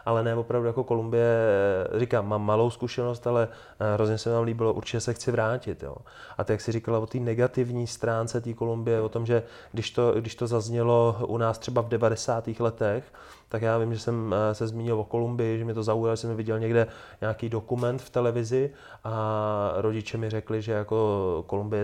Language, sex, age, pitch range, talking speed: Czech, male, 20-39, 110-120 Hz, 200 wpm